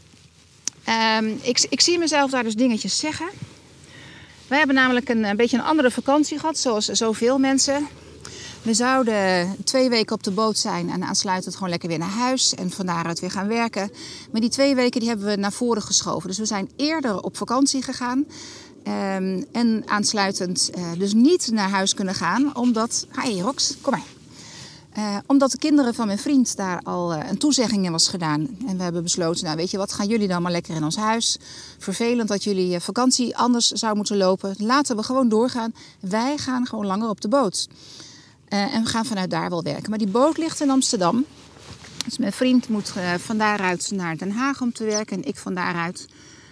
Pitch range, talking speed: 190-250 Hz, 200 wpm